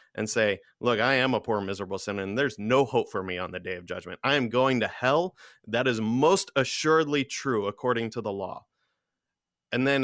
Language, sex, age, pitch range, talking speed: English, male, 30-49, 115-140 Hz, 215 wpm